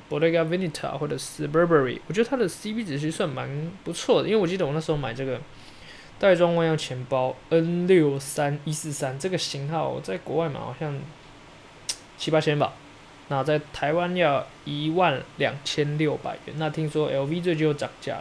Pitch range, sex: 145-180 Hz, male